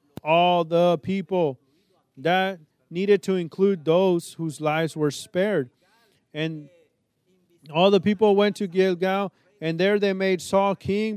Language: English